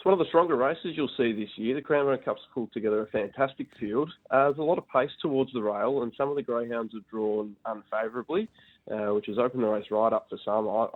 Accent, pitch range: Australian, 105-120 Hz